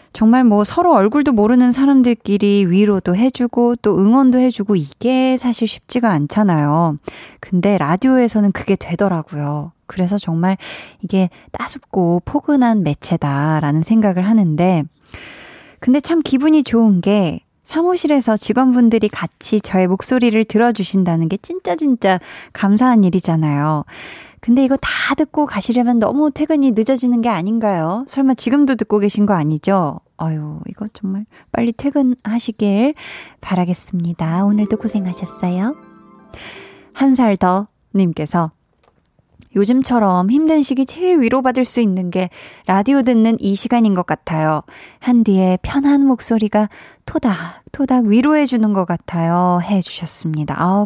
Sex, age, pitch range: female, 20-39, 180-255 Hz